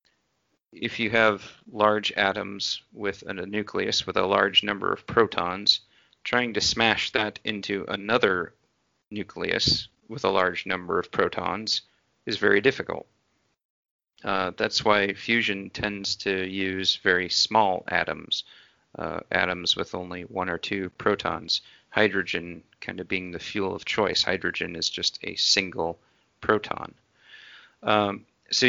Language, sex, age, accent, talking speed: English, male, 30-49, American, 130 wpm